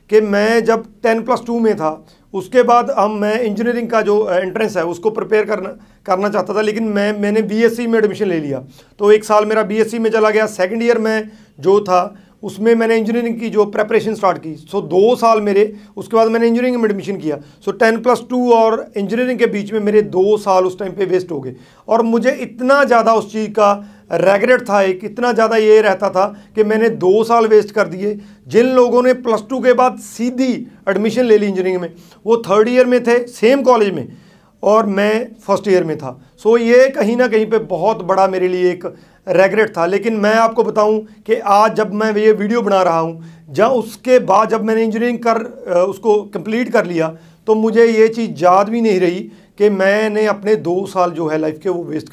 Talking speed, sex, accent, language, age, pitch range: 215 wpm, male, native, Hindi, 40-59, 195-230 Hz